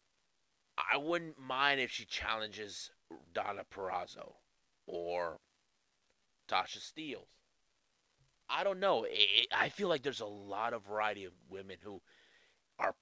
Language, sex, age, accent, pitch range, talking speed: English, male, 30-49, American, 105-155 Hz, 120 wpm